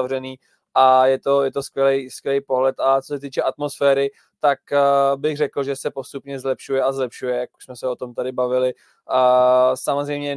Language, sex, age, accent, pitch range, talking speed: Czech, male, 20-39, native, 130-140 Hz, 180 wpm